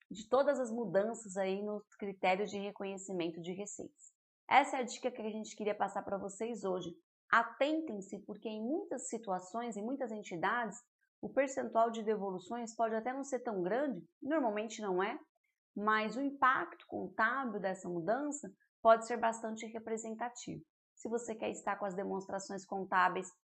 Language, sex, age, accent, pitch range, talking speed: Portuguese, female, 20-39, Brazilian, 195-245 Hz, 160 wpm